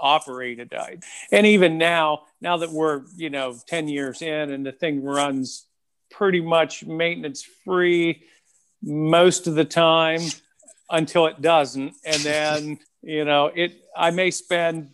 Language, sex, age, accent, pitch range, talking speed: English, male, 50-69, American, 140-170 Hz, 150 wpm